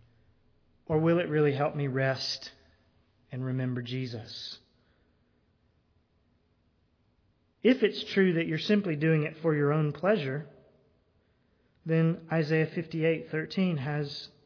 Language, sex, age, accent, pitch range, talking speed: English, male, 30-49, American, 130-185 Hz, 110 wpm